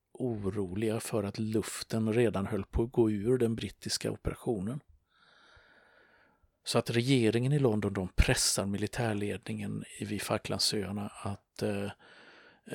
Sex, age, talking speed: male, 50-69, 120 wpm